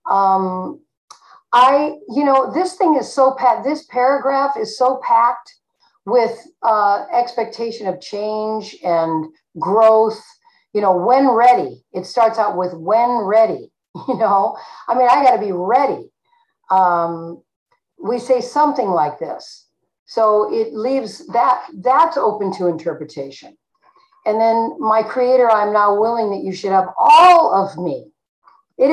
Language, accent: English, American